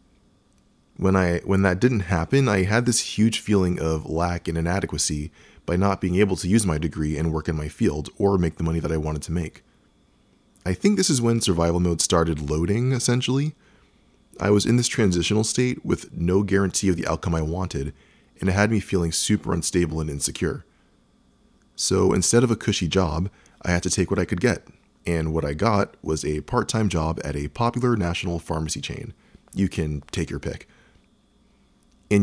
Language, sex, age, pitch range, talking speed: English, male, 20-39, 80-105 Hz, 195 wpm